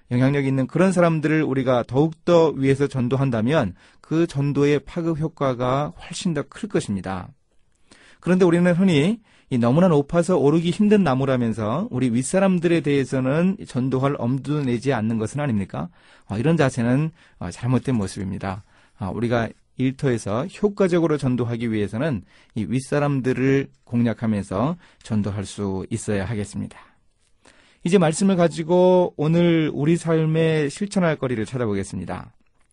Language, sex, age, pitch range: Korean, male, 30-49, 115-165 Hz